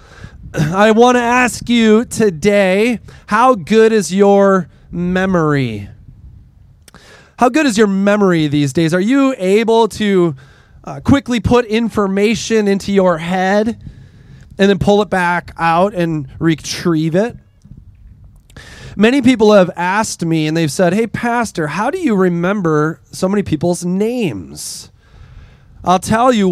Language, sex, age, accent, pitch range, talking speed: English, male, 30-49, American, 155-210 Hz, 135 wpm